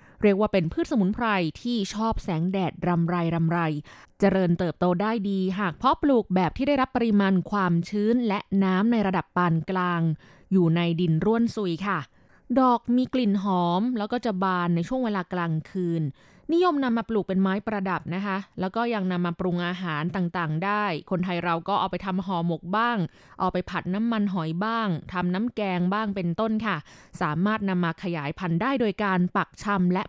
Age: 20-39